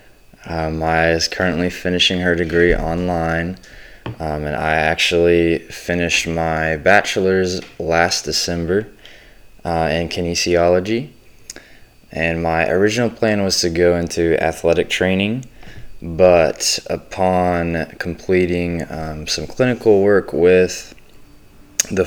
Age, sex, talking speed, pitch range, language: 20-39, male, 105 wpm, 80-95 Hz, English